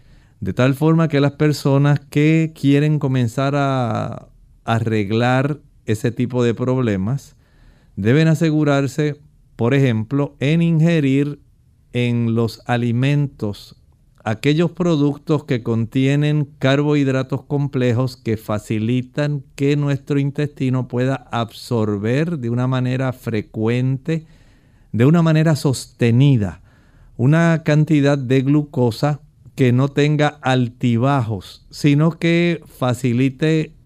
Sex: male